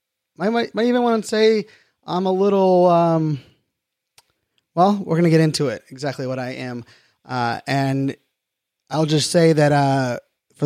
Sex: male